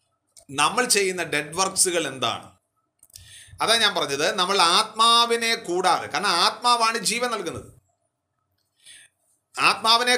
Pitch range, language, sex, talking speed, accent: 165-225 Hz, Malayalam, male, 95 wpm, native